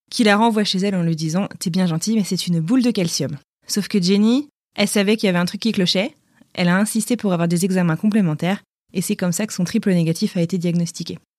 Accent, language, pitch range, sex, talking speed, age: French, French, 175-220 Hz, female, 255 wpm, 20-39